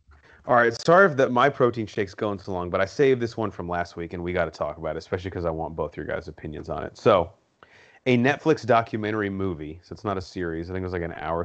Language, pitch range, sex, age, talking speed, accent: English, 90-115 Hz, male, 30-49, 275 wpm, American